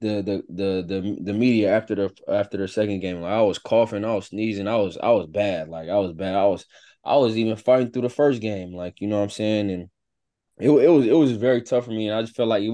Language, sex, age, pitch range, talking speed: English, male, 20-39, 95-110 Hz, 280 wpm